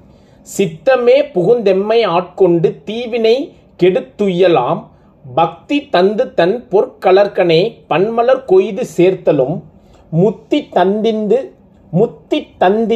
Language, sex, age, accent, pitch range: Tamil, male, 30-49, native, 175-245 Hz